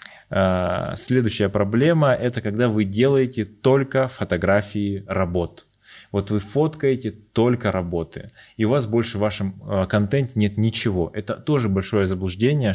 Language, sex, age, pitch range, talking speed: Russian, male, 20-39, 95-115 Hz, 125 wpm